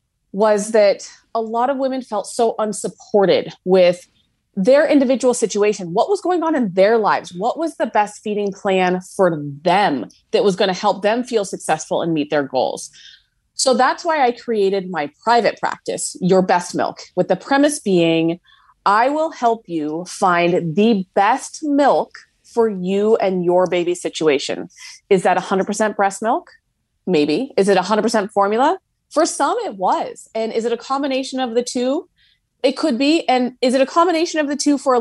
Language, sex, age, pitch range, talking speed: English, female, 30-49, 180-255 Hz, 180 wpm